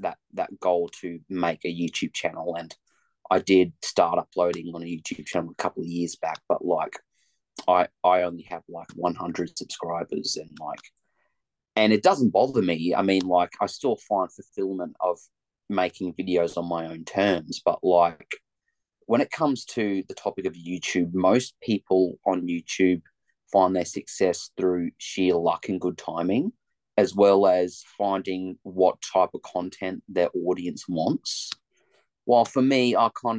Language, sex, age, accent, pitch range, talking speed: English, male, 30-49, Australian, 85-105 Hz, 165 wpm